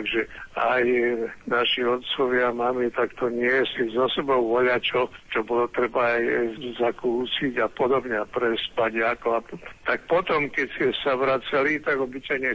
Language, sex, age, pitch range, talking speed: Slovak, male, 60-79, 115-135 Hz, 145 wpm